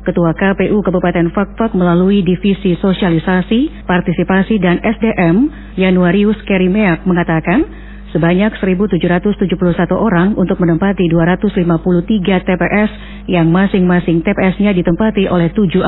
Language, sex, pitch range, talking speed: Indonesian, female, 175-205 Hz, 100 wpm